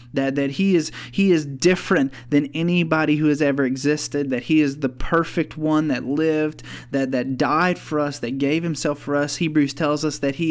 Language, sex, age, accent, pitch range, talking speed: English, male, 30-49, American, 135-160 Hz, 205 wpm